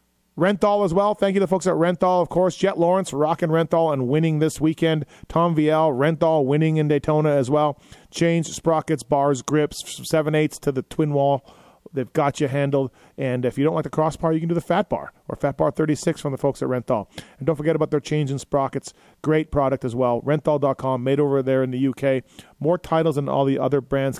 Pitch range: 130-160 Hz